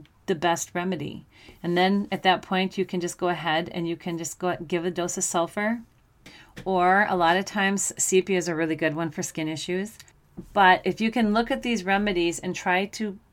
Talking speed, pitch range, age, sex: 225 wpm, 165-190 Hz, 40-59, female